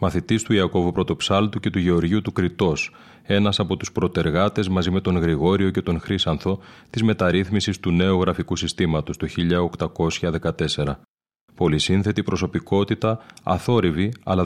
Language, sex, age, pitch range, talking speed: Greek, male, 30-49, 85-100 Hz, 135 wpm